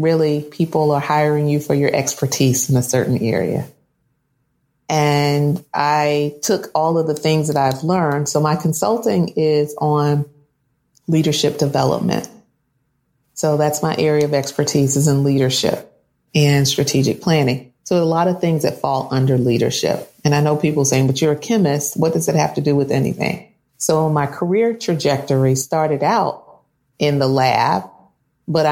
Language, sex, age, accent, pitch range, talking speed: English, female, 40-59, American, 140-155 Hz, 160 wpm